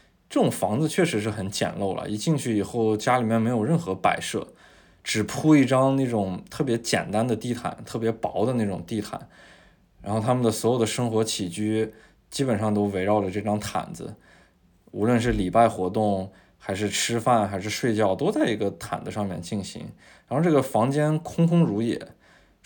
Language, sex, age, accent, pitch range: Chinese, male, 20-39, native, 100-125 Hz